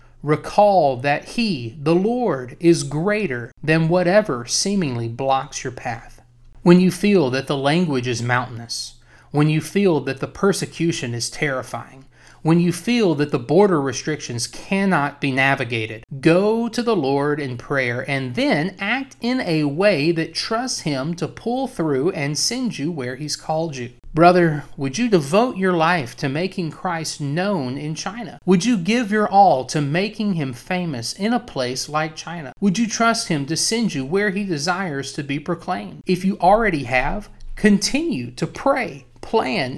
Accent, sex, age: American, male, 30-49